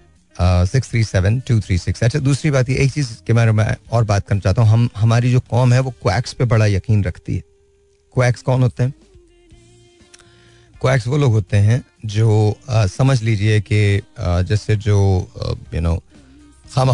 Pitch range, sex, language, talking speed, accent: 95-115 Hz, male, Hindi, 175 wpm, native